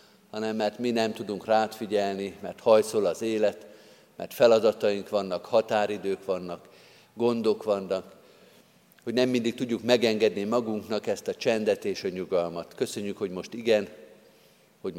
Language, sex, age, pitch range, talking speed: Hungarian, male, 50-69, 100-115 Hz, 135 wpm